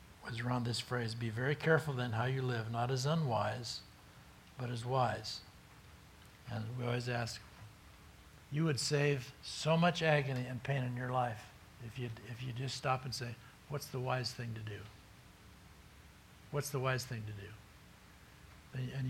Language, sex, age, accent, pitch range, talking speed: English, male, 60-79, American, 110-135 Hz, 165 wpm